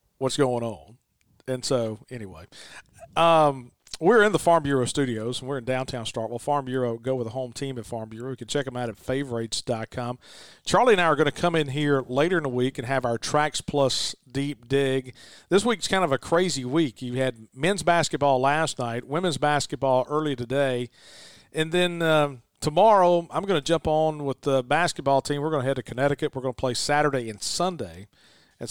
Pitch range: 120-150 Hz